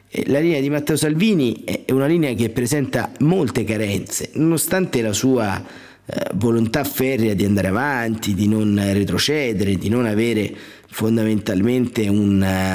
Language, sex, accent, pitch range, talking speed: Italian, male, native, 100-125 Hz, 130 wpm